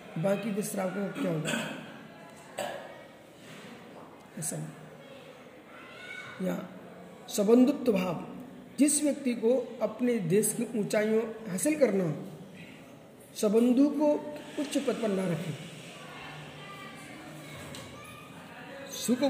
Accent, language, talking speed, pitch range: native, Hindi, 80 wpm, 200-260 Hz